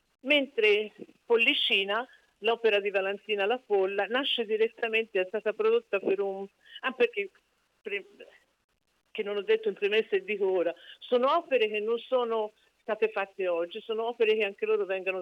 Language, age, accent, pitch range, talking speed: Italian, 50-69, native, 190-260 Hz, 160 wpm